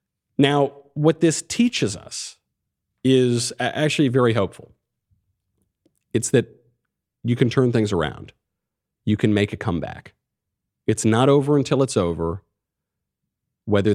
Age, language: 40-59, English